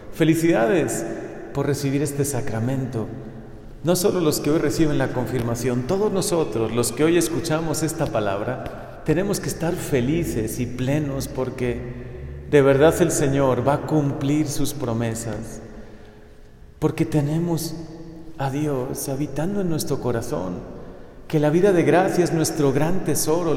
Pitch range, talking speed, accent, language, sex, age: 115-155 Hz, 135 wpm, Mexican, Spanish, male, 40-59